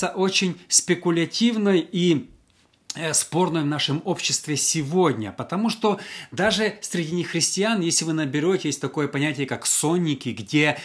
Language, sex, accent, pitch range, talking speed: Russian, male, native, 130-175 Hz, 120 wpm